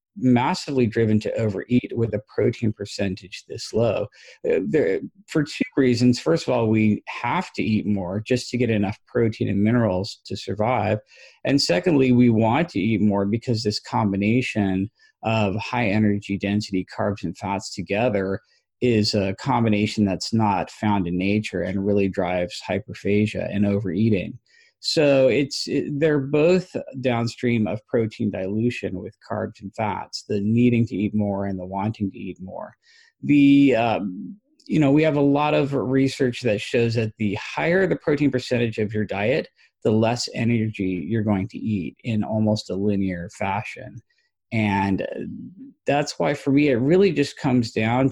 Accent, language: American, English